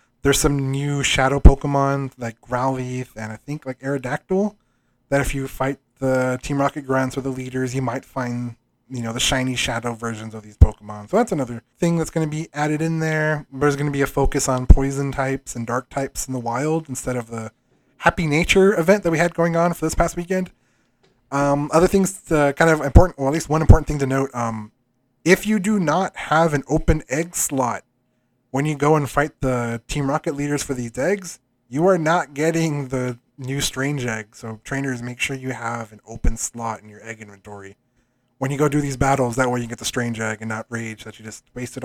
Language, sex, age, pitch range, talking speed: English, male, 20-39, 120-155 Hz, 220 wpm